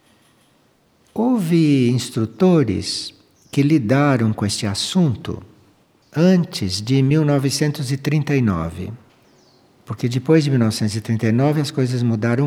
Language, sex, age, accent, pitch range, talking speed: Portuguese, male, 60-79, Brazilian, 110-155 Hz, 80 wpm